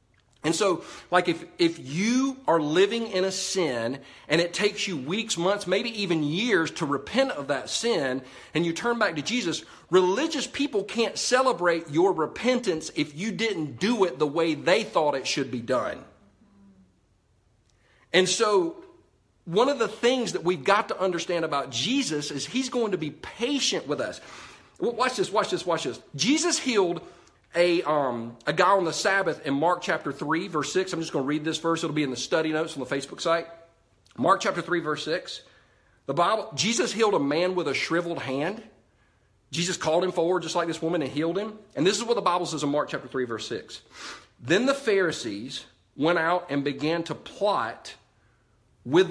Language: English